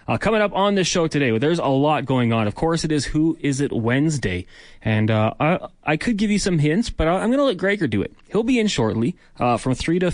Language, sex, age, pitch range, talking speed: English, male, 30-49, 120-160 Hz, 270 wpm